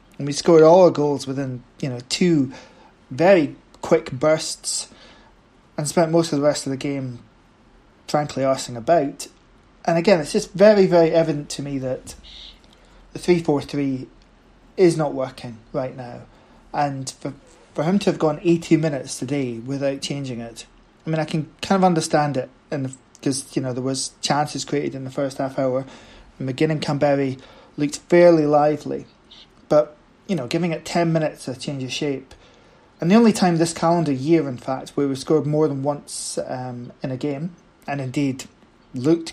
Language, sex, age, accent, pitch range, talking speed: English, male, 20-39, British, 135-165 Hz, 175 wpm